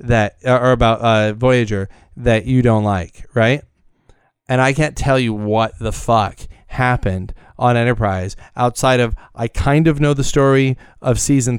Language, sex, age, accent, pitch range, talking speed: English, male, 30-49, American, 110-135 Hz, 160 wpm